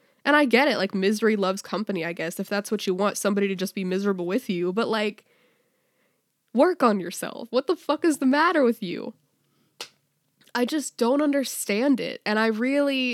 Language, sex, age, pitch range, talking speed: English, female, 10-29, 195-255 Hz, 195 wpm